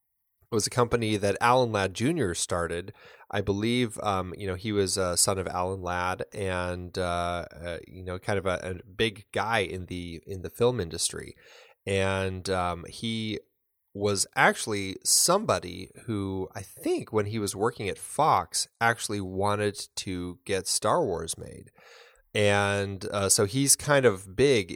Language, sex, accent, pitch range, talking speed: English, male, American, 95-115 Hz, 160 wpm